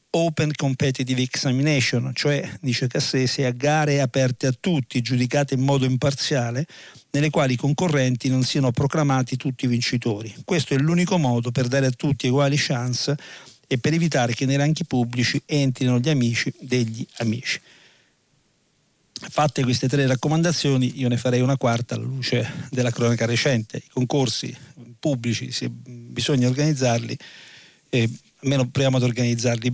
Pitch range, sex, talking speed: 120-140 Hz, male, 145 wpm